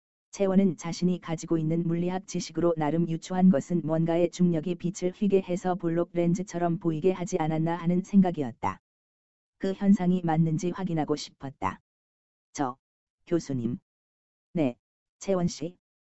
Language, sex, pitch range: Korean, female, 155-180 Hz